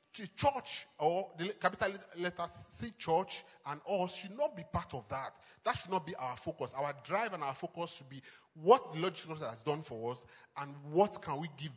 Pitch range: 150-195 Hz